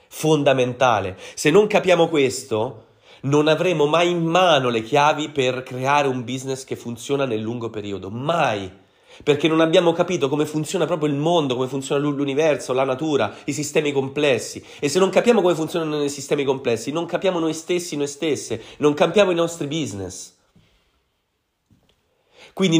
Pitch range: 125-165 Hz